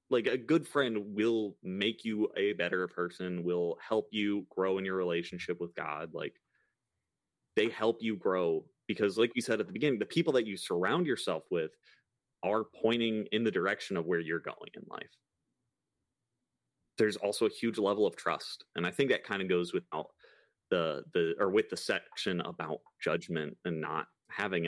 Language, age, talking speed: English, 30-49, 180 wpm